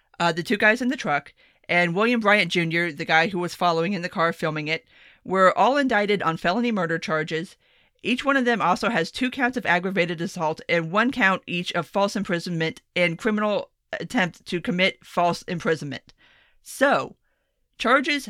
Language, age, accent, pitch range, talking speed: English, 40-59, American, 165-225 Hz, 180 wpm